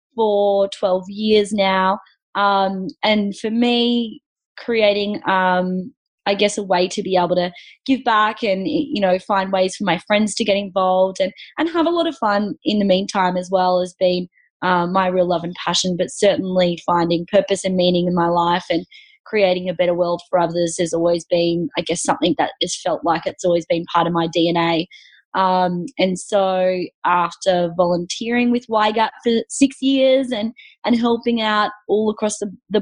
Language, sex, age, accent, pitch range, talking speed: English, female, 20-39, Australian, 180-215 Hz, 185 wpm